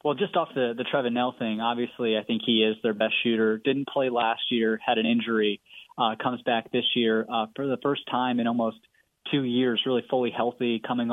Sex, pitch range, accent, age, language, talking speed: male, 115-130 Hz, American, 20-39, English, 220 wpm